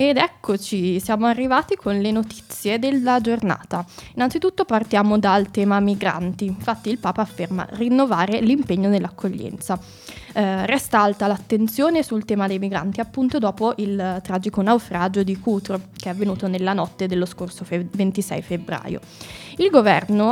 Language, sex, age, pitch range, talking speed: Italian, female, 20-39, 190-225 Hz, 140 wpm